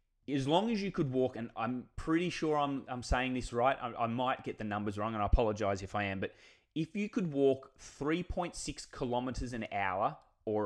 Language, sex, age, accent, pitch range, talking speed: English, male, 20-39, Australian, 105-135 Hz, 215 wpm